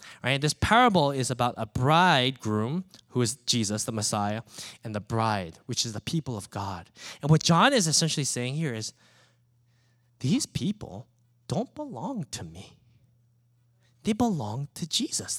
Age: 20-39